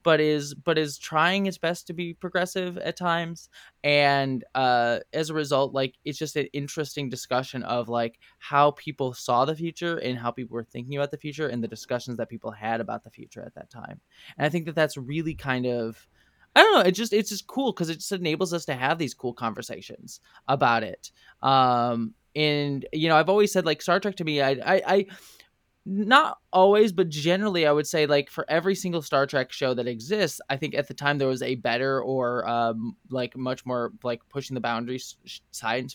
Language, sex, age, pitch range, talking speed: English, male, 20-39, 125-155 Hz, 215 wpm